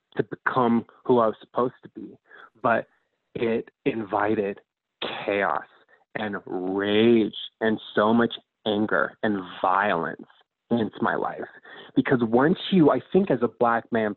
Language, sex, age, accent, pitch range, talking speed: English, male, 20-39, American, 110-130 Hz, 135 wpm